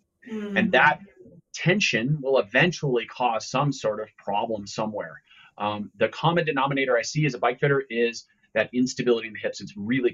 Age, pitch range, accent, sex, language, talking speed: 30-49, 110-145 Hz, American, male, English, 170 wpm